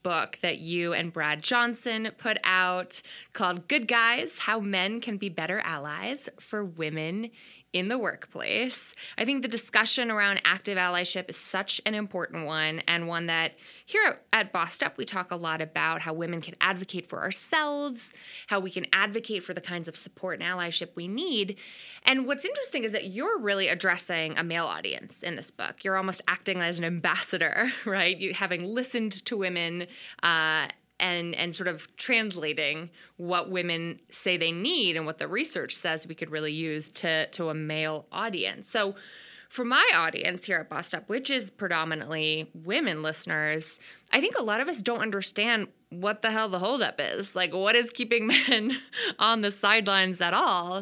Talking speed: 180 wpm